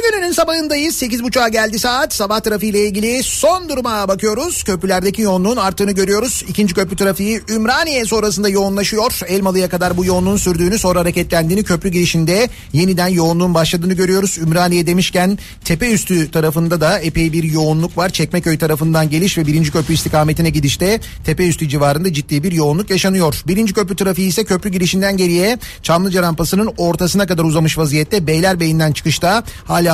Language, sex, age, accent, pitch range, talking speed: Turkish, male, 40-59, native, 165-205 Hz, 155 wpm